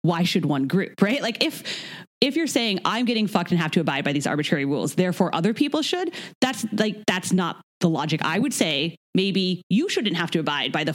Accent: American